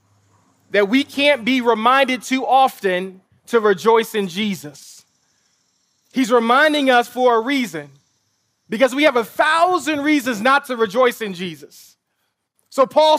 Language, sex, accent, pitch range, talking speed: English, male, American, 200-265 Hz, 135 wpm